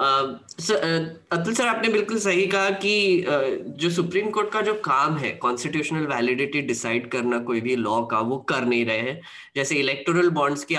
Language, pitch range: Hindi, 150-200 Hz